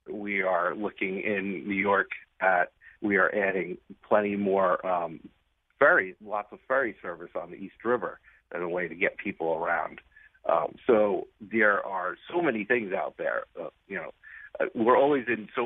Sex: male